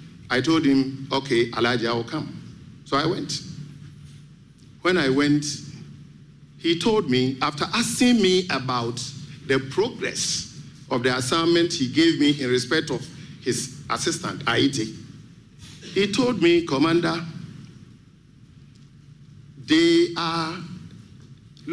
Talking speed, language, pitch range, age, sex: 110 wpm, English, 135-165 Hz, 50-69, male